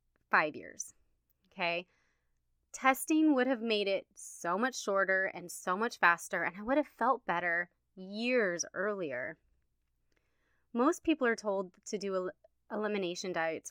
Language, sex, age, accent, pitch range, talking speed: English, female, 20-39, American, 175-235 Hz, 135 wpm